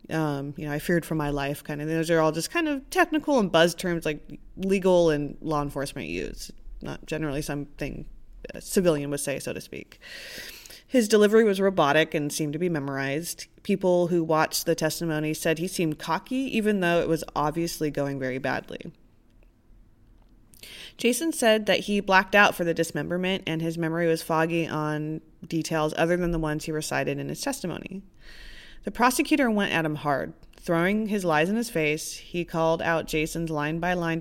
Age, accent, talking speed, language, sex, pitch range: 20-39, American, 185 wpm, English, female, 155-190 Hz